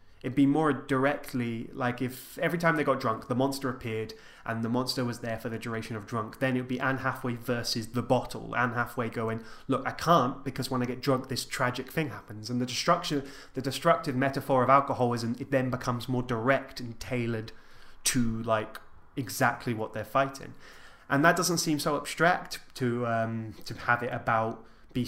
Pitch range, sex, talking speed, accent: 115-130 Hz, male, 195 wpm, British